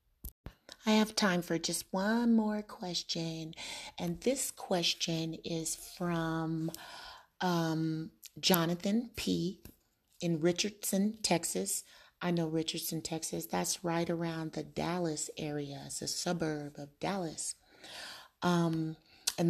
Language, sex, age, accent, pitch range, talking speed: English, female, 30-49, American, 160-195 Hz, 110 wpm